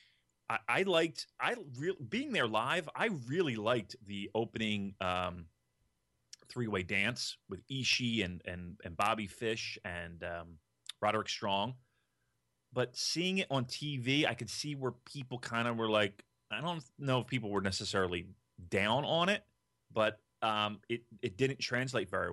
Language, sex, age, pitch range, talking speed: English, male, 30-49, 95-125 Hz, 160 wpm